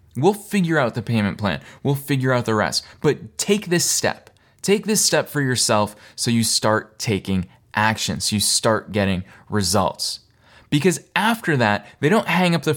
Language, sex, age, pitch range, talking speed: English, male, 20-39, 110-150 Hz, 180 wpm